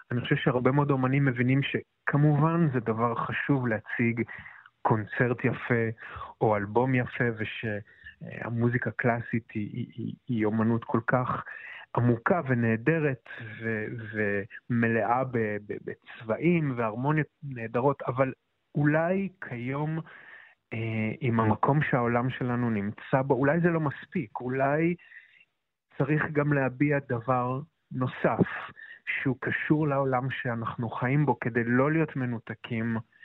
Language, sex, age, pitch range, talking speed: Hebrew, male, 30-49, 115-145 Hz, 110 wpm